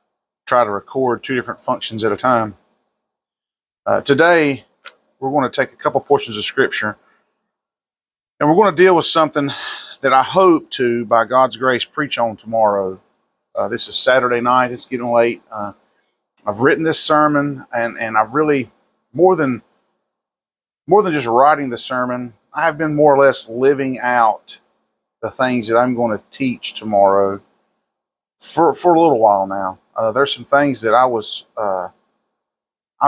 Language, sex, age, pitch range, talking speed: English, male, 40-59, 115-145 Hz, 165 wpm